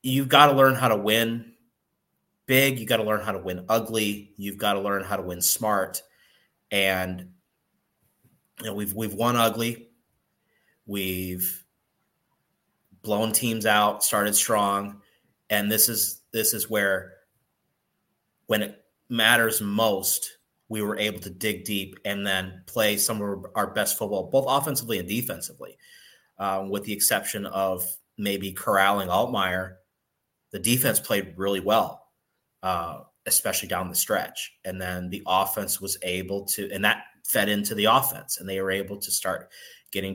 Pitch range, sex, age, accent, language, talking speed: 95-110 Hz, male, 30-49, American, English, 155 wpm